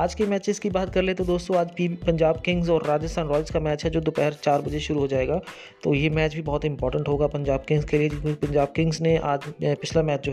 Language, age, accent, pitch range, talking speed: Hindi, 20-39, native, 150-165 Hz, 265 wpm